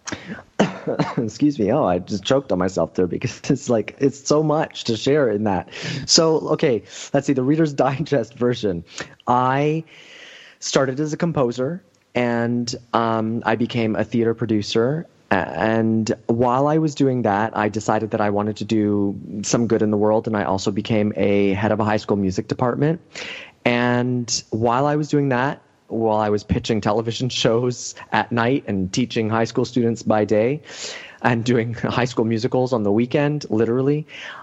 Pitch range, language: 105-130 Hz, English